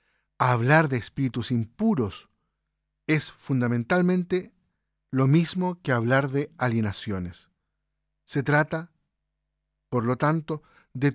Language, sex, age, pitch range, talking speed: Spanish, male, 50-69, 130-170 Hz, 95 wpm